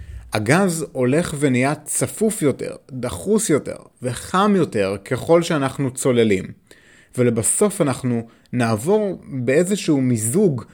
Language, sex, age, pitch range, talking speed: Hebrew, male, 30-49, 110-160 Hz, 95 wpm